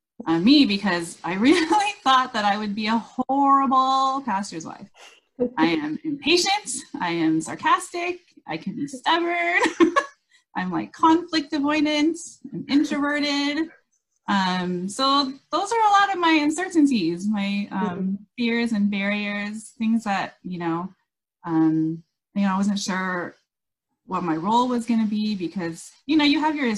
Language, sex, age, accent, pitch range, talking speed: English, female, 30-49, American, 165-265 Hz, 150 wpm